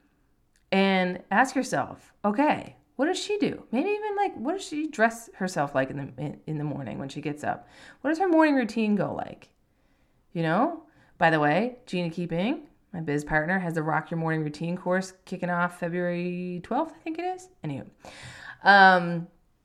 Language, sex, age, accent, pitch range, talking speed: English, female, 30-49, American, 170-250 Hz, 185 wpm